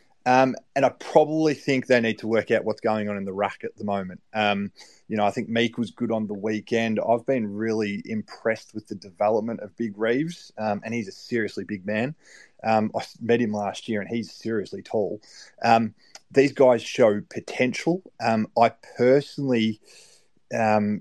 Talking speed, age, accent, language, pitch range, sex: 190 wpm, 20-39, Australian, English, 105-125 Hz, male